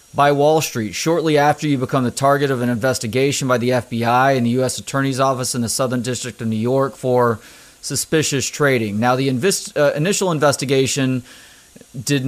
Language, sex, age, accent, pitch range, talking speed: English, male, 30-49, American, 125-150 Hz, 175 wpm